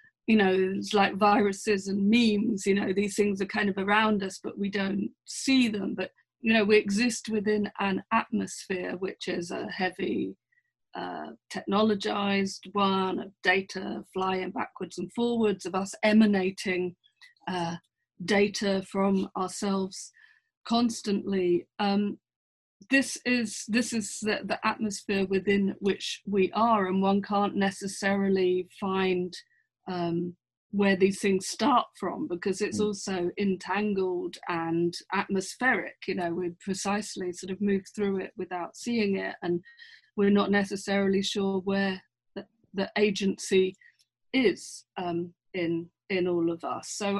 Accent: British